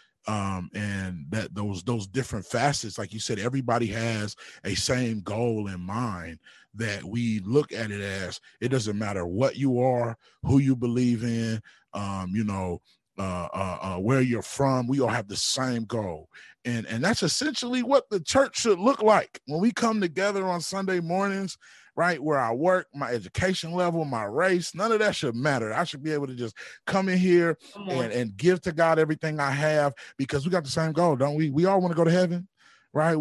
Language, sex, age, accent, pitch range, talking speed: English, male, 30-49, American, 115-165 Hz, 200 wpm